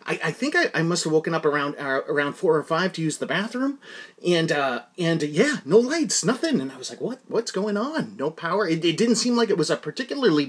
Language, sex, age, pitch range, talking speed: English, male, 30-49, 150-205 Hz, 265 wpm